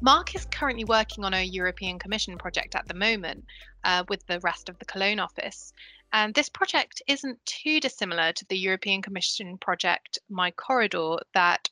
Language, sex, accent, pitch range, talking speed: English, female, British, 185-245 Hz, 175 wpm